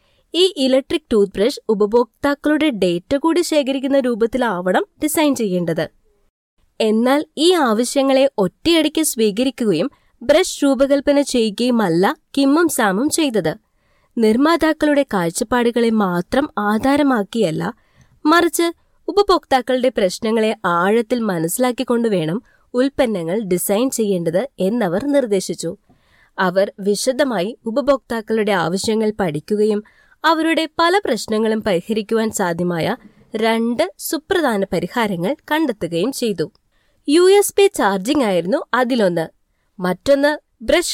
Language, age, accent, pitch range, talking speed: Malayalam, 20-39, native, 200-285 Hz, 85 wpm